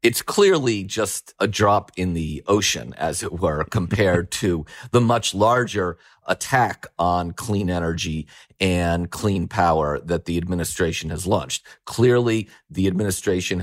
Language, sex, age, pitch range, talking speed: English, male, 40-59, 90-110 Hz, 135 wpm